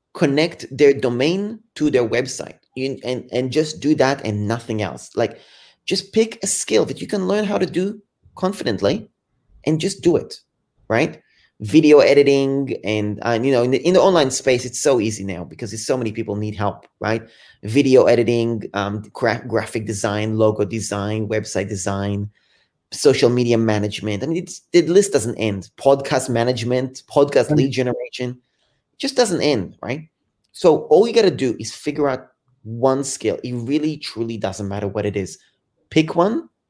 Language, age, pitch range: English, 30-49, 110-150 Hz